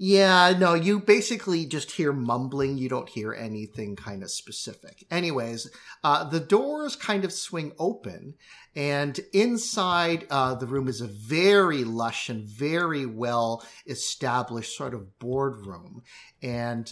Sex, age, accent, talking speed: male, 50-69, American, 135 wpm